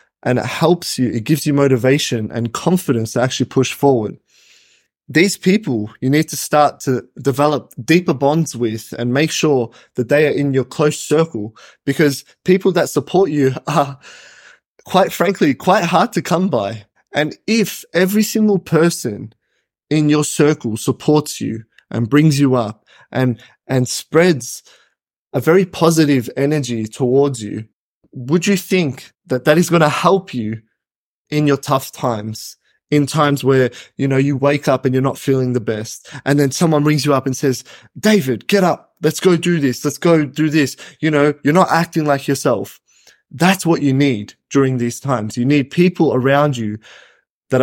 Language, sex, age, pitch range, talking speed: English, male, 20-39, 125-155 Hz, 175 wpm